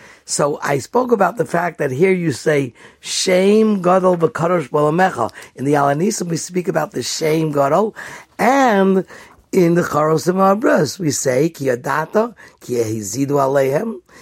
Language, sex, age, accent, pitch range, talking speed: English, male, 60-79, American, 145-205 Hz, 130 wpm